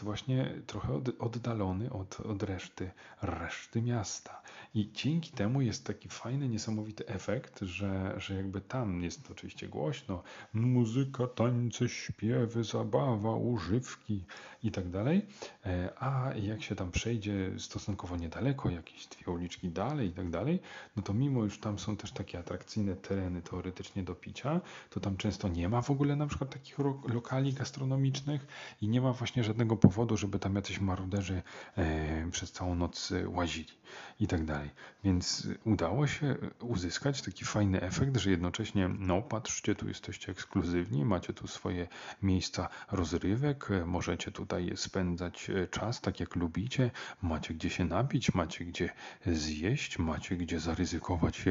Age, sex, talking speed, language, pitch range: 40-59, male, 145 wpm, Polish, 90-120 Hz